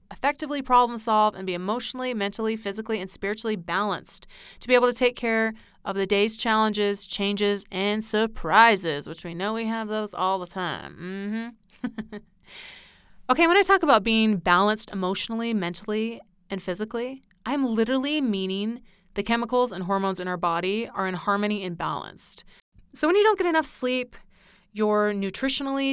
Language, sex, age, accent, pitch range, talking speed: English, female, 30-49, American, 195-250 Hz, 160 wpm